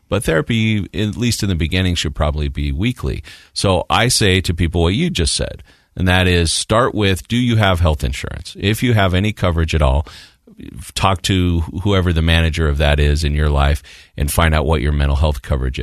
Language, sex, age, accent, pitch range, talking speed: English, male, 40-59, American, 80-105 Hz, 210 wpm